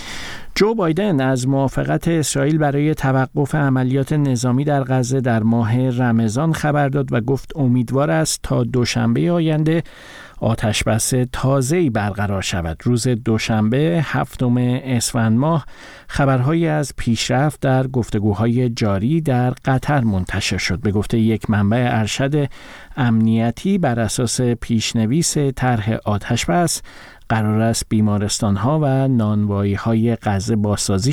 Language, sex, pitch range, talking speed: Persian, male, 110-140 Hz, 120 wpm